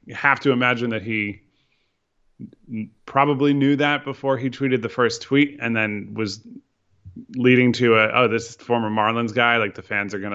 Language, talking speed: English, 185 wpm